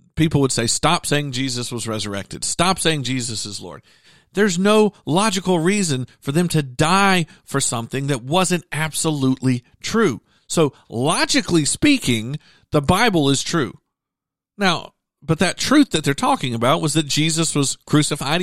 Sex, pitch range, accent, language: male, 120-165 Hz, American, English